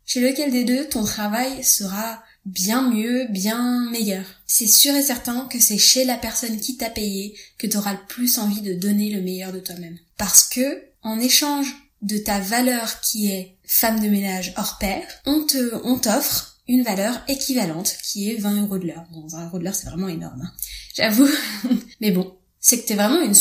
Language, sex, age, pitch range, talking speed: French, female, 10-29, 205-250 Hz, 205 wpm